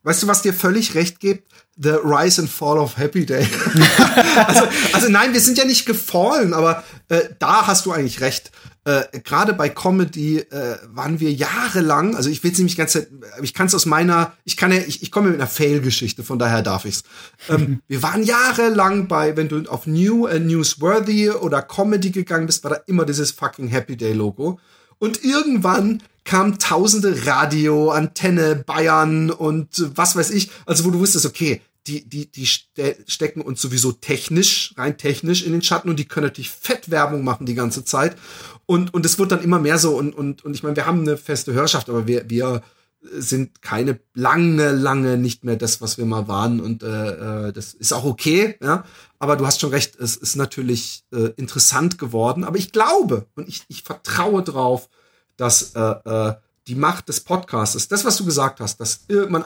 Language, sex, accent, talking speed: German, male, German, 195 wpm